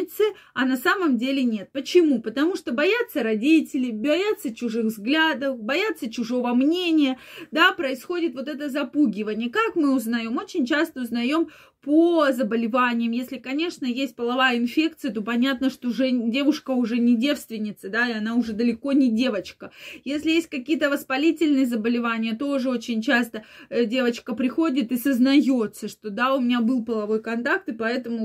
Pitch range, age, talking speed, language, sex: 240-305 Hz, 20-39, 150 wpm, Russian, female